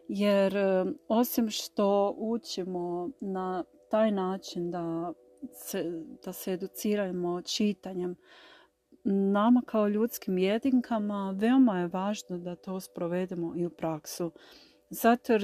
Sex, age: female, 40-59